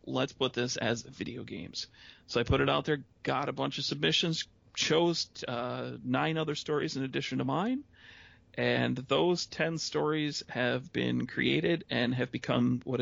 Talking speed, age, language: 170 wpm, 40-59, English